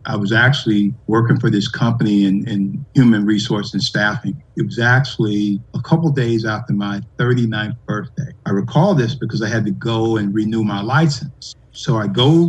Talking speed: 190 wpm